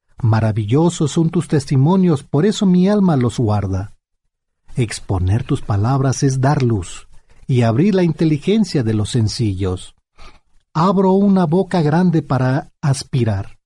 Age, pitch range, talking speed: 40-59, 110-170 Hz, 125 wpm